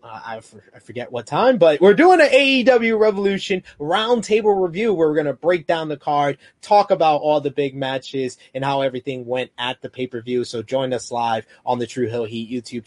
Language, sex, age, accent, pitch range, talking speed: English, male, 20-39, American, 145-185 Hz, 205 wpm